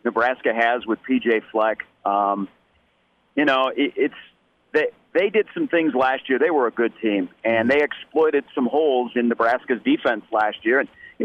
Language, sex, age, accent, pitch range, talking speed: English, male, 40-59, American, 120-165 Hz, 180 wpm